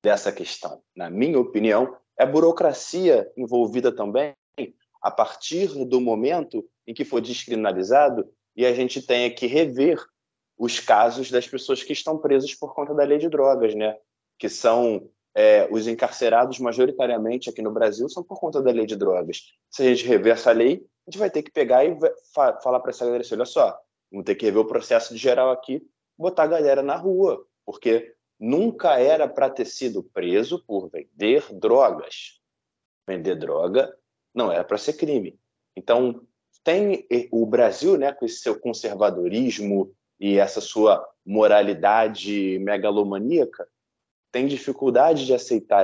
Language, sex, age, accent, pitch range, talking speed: Portuguese, male, 20-39, Brazilian, 115-165 Hz, 160 wpm